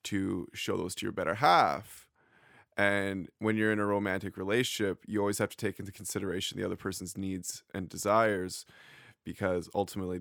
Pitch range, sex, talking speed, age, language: 100-120 Hz, male, 170 wpm, 20-39, English